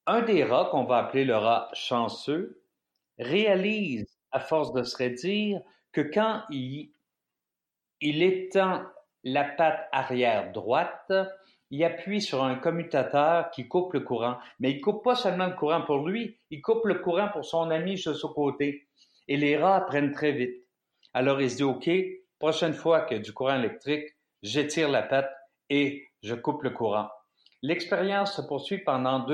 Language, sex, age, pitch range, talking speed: French, male, 50-69, 135-185 Hz, 170 wpm